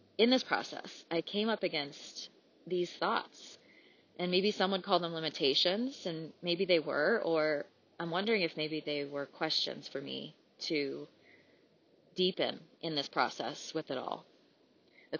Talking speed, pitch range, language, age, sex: 155 wpm, 155-195 Hz, English, 20-39, female